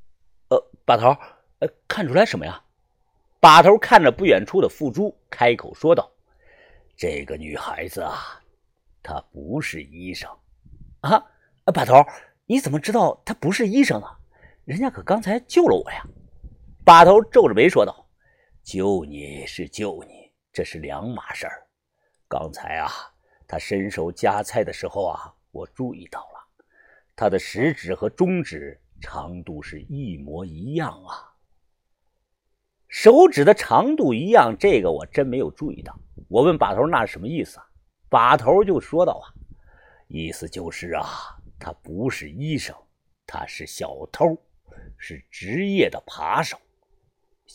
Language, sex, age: Chinese, male, 50-69